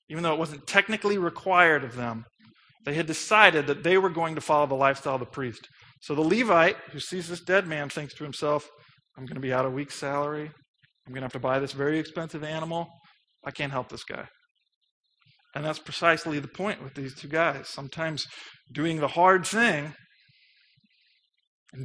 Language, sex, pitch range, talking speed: English, male, 135-165 Hz, 195 wpm